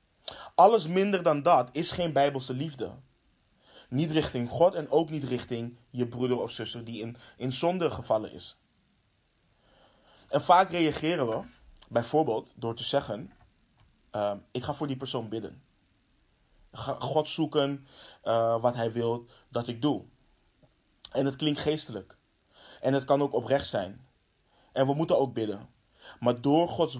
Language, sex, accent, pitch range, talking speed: Dutch, male, Dutch, 120-150 Hz, 150 wpm